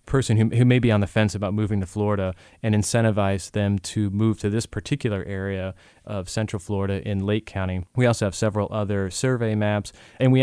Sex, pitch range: male, 100-110 Hz